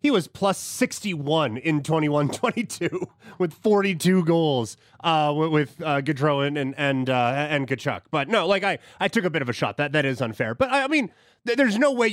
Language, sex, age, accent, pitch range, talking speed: English, male, 30-49, American, 135-185 Hz, 215 wpm